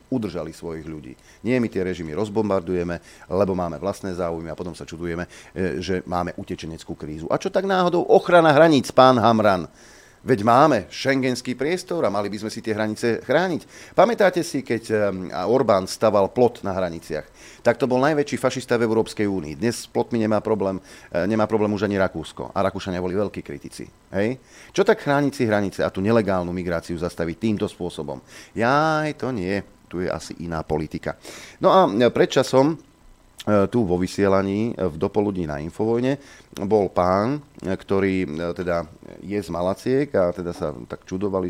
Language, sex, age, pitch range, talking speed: Slovak, male, 40-59, 85-110 Hz, 165 wpm